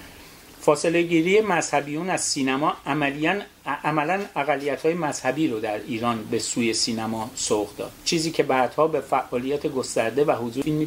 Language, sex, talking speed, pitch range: Persian, male, 145 wpm, 125-165 Hz